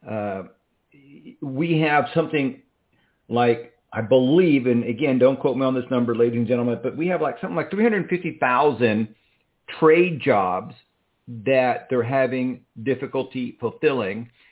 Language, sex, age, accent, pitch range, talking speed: English, male, 50-69, American, 125-165 Hz, 130 wpm